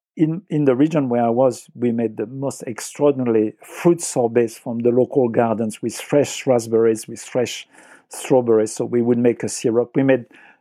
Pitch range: 120-145 Hz